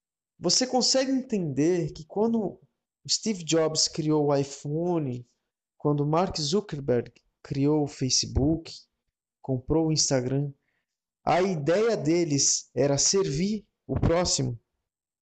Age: 20-39